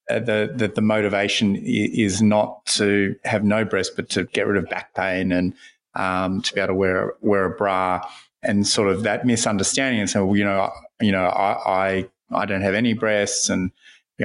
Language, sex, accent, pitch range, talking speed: English, male, Australian, 100-115 Hz, 200 wpm